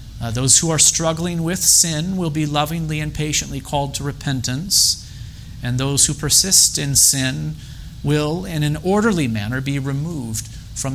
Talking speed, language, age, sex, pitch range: 160 wpm, English, 40-59, male, 115-160 Hz